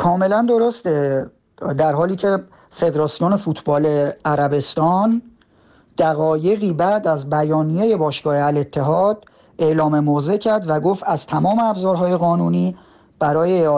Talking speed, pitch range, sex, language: 105 wpm, 150-185 Hz, male, Persian